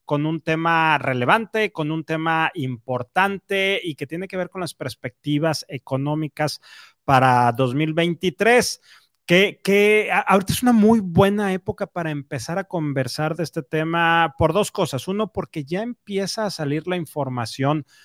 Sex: male